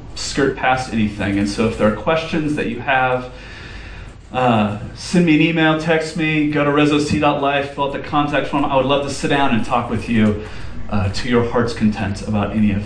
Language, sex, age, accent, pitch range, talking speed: English, male, 30-49, American, 115-145 Hz, 210 wpm